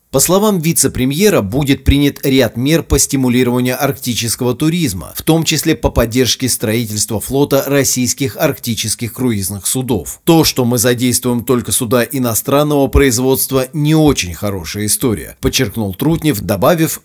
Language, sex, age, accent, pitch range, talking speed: Russian, male, 30-49, native, 115-140 Hz, 130 wpm